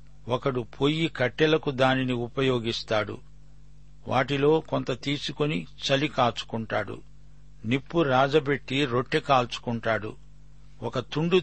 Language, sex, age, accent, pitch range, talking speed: Telugu, male, 60-79, native, 125-145 Hz, 85 wpm